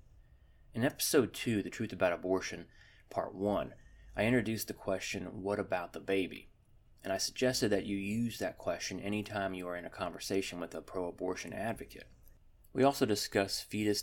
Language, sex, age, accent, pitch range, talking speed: English, male, 30-49, American, 95-110 Hz, 170 wpm